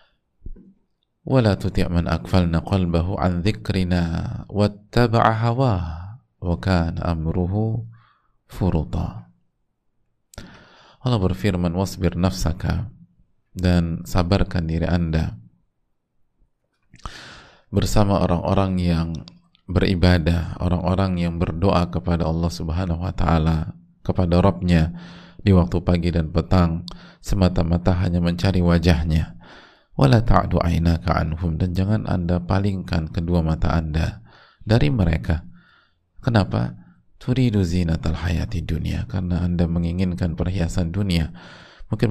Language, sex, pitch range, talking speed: Indonesian, male, 85-95 Hz, 90 wpm